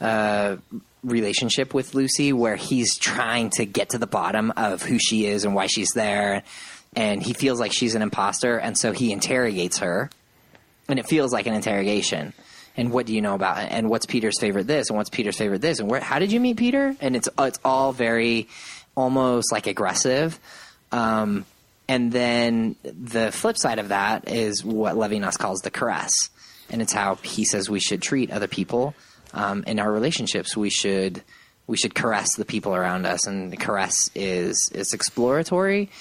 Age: 20-39